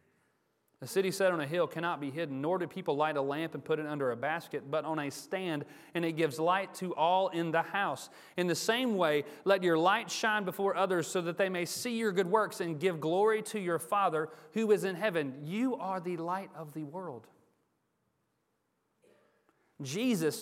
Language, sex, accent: English, male, American